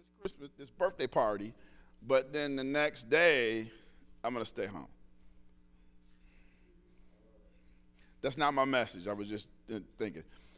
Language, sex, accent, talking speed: English, male, American, 120 wpm